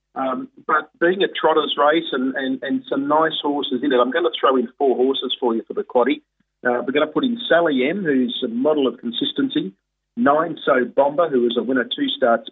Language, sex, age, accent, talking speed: English, male, 40-59, Australian, 225 wpm